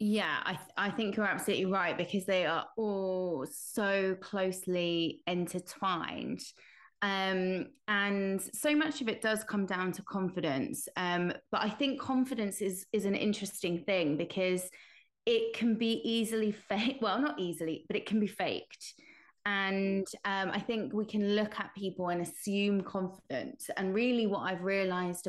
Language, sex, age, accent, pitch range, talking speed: English, female, 20-39, British, 175-215 Hz, 160 wpm